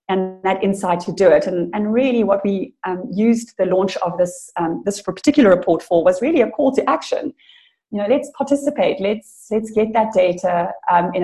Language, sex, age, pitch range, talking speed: English, female, 30-49, 175-210 Hz, 210 wpm